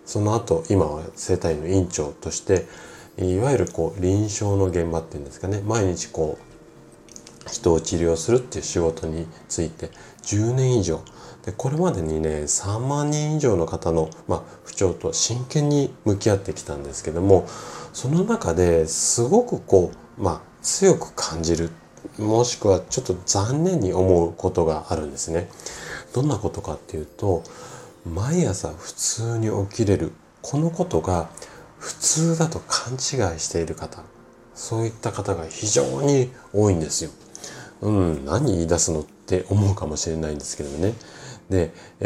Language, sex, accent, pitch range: Japanese, male, native, 80-120 Hz